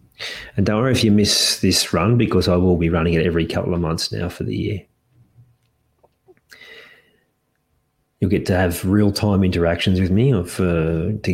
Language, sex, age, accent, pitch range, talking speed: English, male, 30-49, Australian, 85-105 Hz, 180 wpm